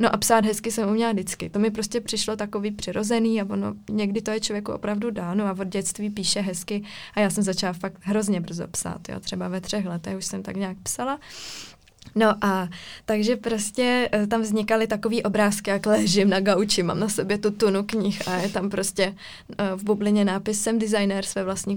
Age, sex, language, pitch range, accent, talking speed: 20-39, female, Czech, 195-225 Hz, native, 200 wpm